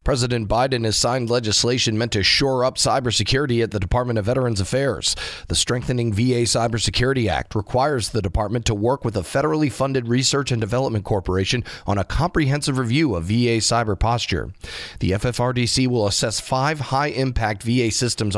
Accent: American